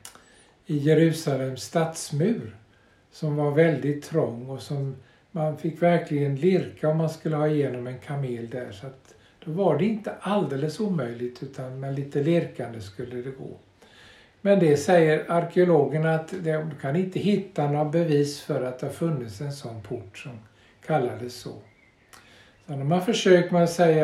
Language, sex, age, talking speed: Swedish, male, 60-79, 160 wpm